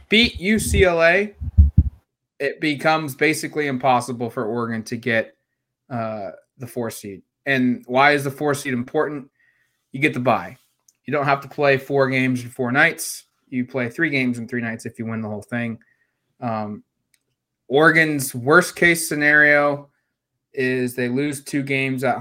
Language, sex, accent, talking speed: English, male, American, 155 wpm